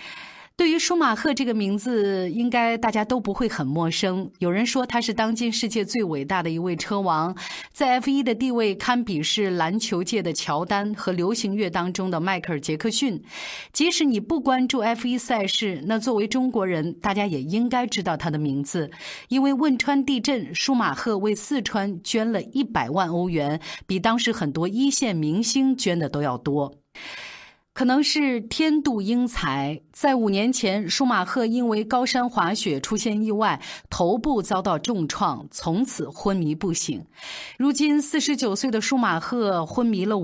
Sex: female